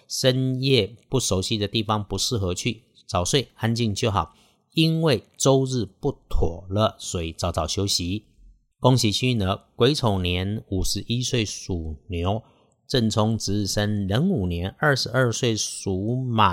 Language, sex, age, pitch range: Chinese, male, 50-69, 95-115 Hz